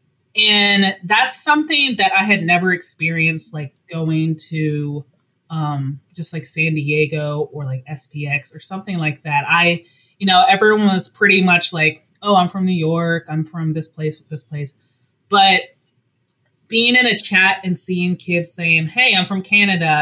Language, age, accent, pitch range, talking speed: English, 20-39, American, 145-185 Hz, 165 wpm